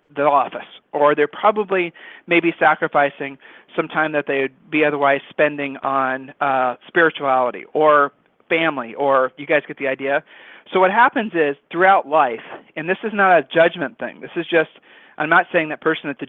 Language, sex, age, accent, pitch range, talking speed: English, male, 40-59, American, 145-170 Hz, 180 wpm